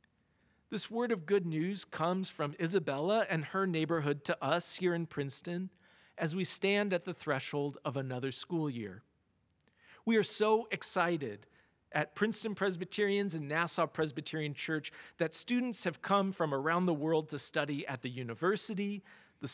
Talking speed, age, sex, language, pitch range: 155 wpm, 40-59, male, English, 150-200 Hz